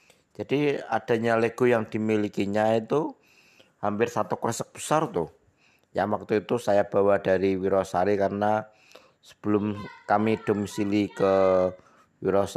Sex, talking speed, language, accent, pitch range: male, 115 wpm, Indonesian, native, 100-130 Hz